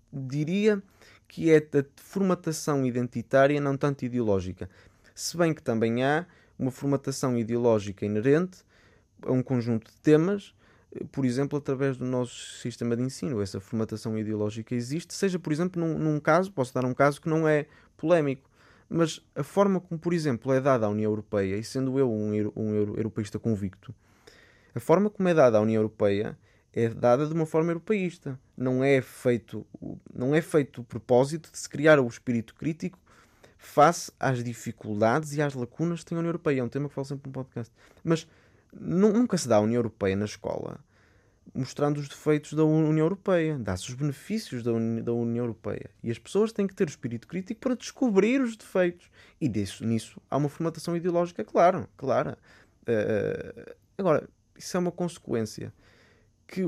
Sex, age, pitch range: male, 20-39, 115-160 Hz